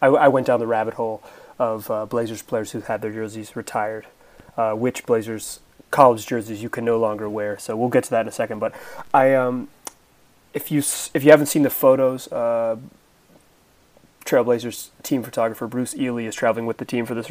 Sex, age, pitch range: male, 30-49, 110-140 Hz